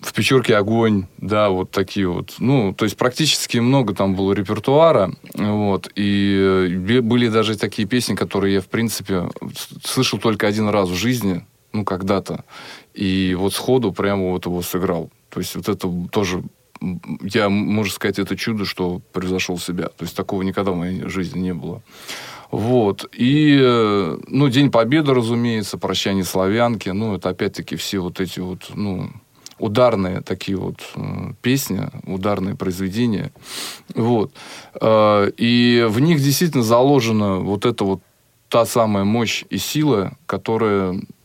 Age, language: 20-39, Russian